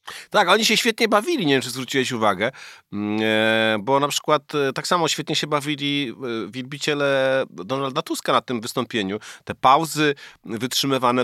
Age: 30-49